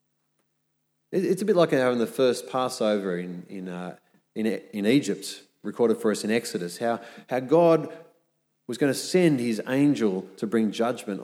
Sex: male